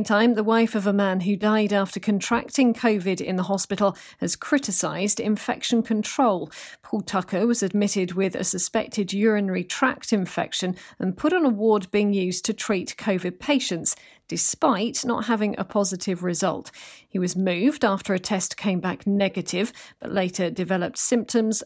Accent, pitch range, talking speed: British, 185-230 Hz, 160 wpm